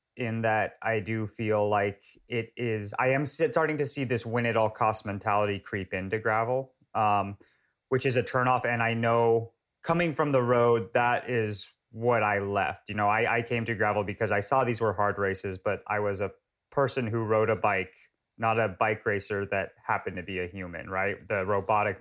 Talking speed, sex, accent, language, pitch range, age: 195 wpm, male, American, English, 105-125 Hz, 30-49